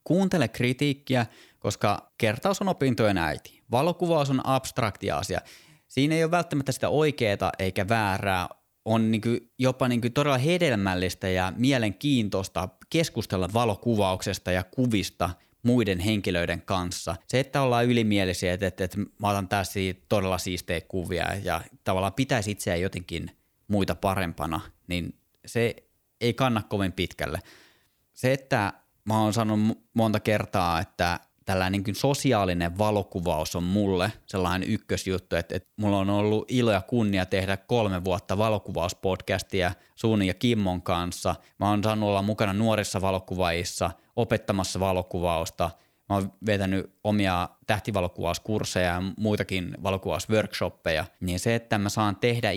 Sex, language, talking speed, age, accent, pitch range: male, Finnish, 130 wpm, 20-39, native, 90-115 Hz